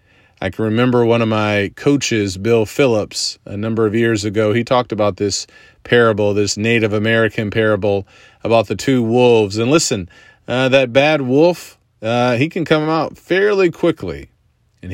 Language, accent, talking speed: English, American, 165 wpm